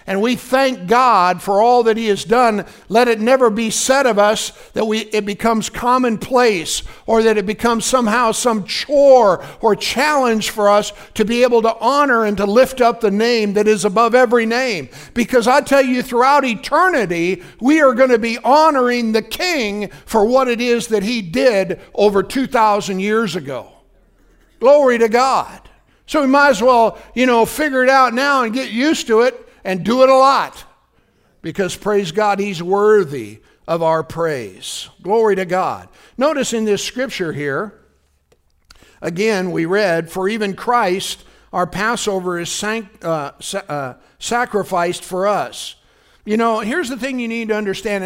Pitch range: 190-250 Hz